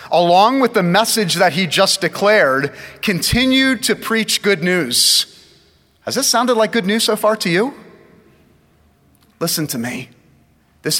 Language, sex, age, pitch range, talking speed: English, male, 30-49, 155-220 Hz, 145 wpm